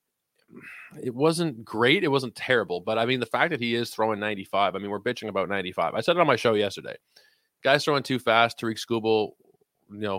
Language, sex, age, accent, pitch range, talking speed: English, male, 20-39, American, 100-120 Hz, 220 wpm